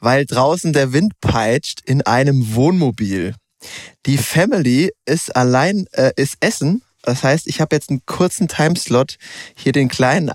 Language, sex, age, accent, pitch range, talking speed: German, male, 20-39, German, 130-155 Hz, 150 wpm